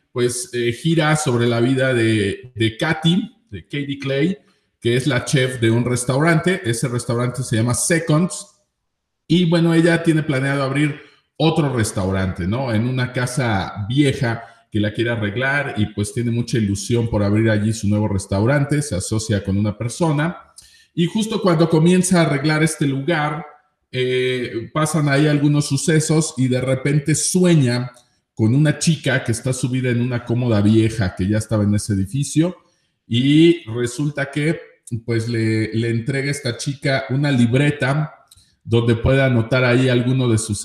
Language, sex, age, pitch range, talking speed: Spanish, male, 40-59, 115-150 Hz, 160 wpm